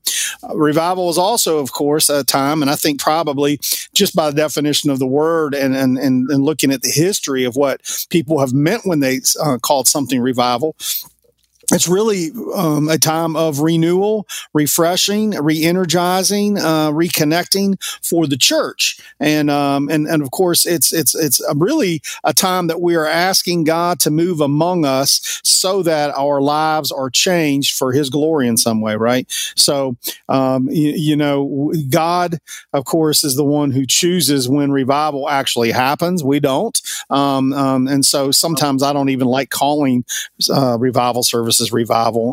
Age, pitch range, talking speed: 40-59, 135-165 Hz, 170 wpm